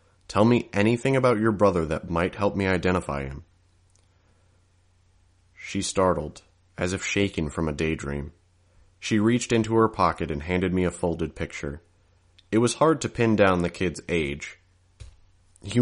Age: 30-49